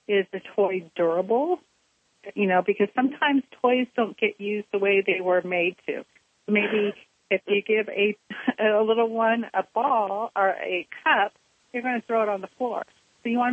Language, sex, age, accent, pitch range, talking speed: English, female, 40-59, American, 185-245 Hz, 185 wpm